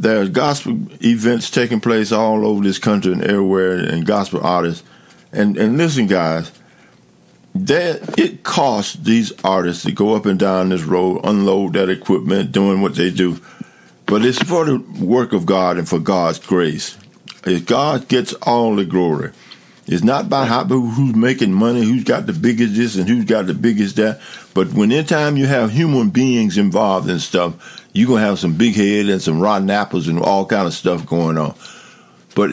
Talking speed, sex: 185 wpm, male